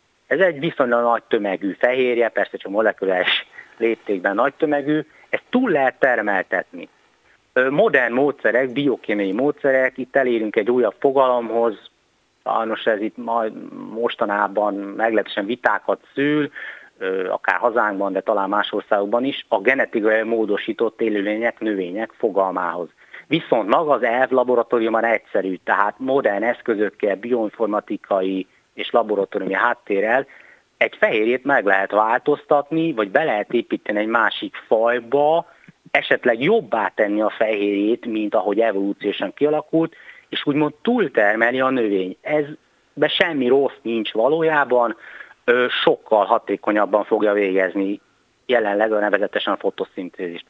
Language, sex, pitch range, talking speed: Hungarian, male, 105-140 Hz, 115 wpm